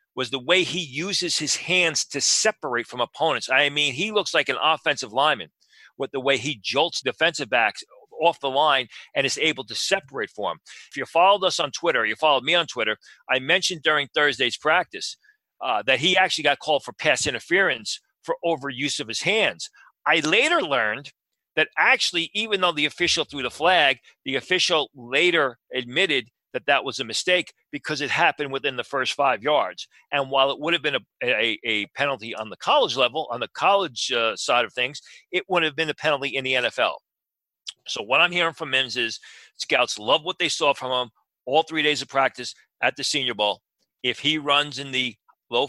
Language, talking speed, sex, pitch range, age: English, 200 wpm, male, 130-170 Hz, 40-59